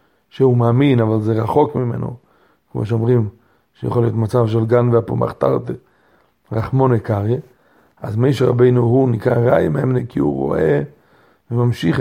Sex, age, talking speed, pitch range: male, 40-59, 135 wpm, 115-135 Hz